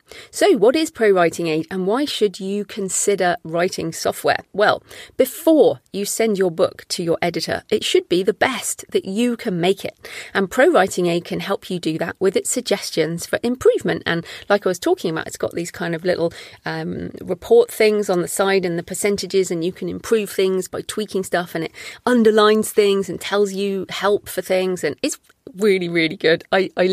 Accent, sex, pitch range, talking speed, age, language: British, female, 175-225 Hz, 205 wpm, 30-49, English